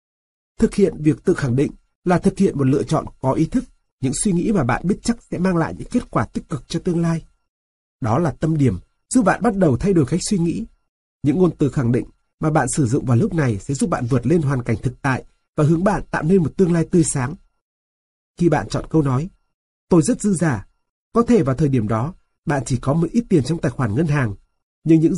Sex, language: male, Vietnamese